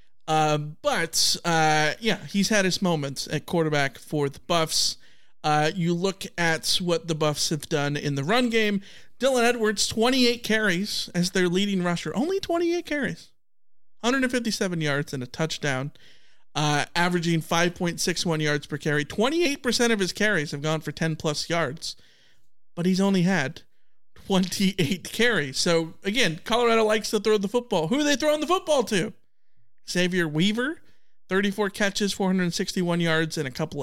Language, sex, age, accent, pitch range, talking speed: English, male, 40-59, American, 160-215 Hz, 155 wpm